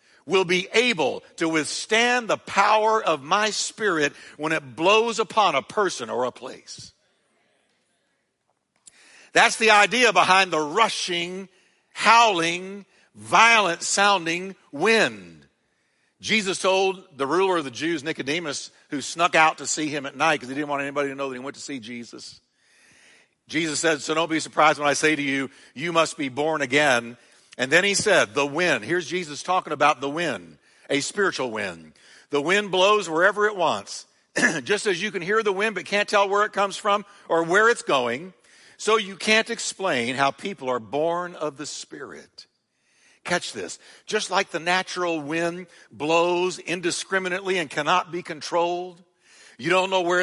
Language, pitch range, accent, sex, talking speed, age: English, 155-195 Hz, American, male, 165 wpm, 60-79